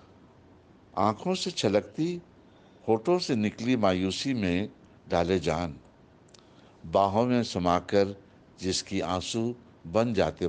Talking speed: 95 wpm